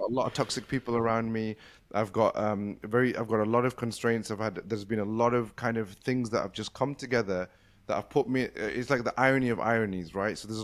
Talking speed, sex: 255 wpm, male